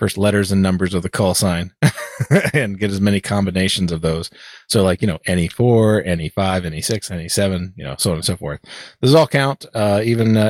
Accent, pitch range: American, 100-140 Hz